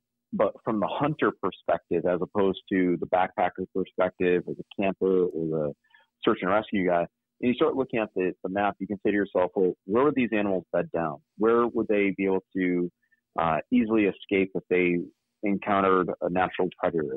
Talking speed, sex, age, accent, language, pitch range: 190 wpm, male, 30-49, American, English, 90-115 Hz